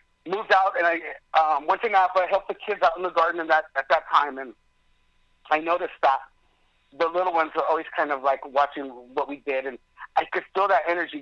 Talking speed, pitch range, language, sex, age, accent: 225 wpm, 135-190 Hz, English, male, 50-69, American